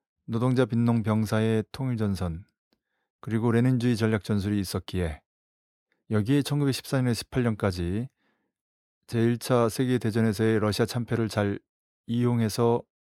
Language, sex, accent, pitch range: Korean, male, native, 105-125 Hz